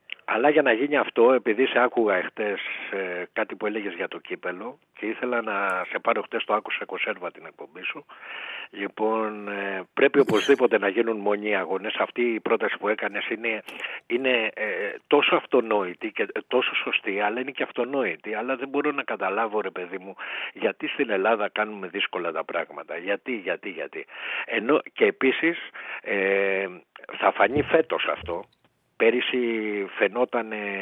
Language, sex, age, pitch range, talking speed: Greek, male, 60-79, 100-135 Hz, 160 wpm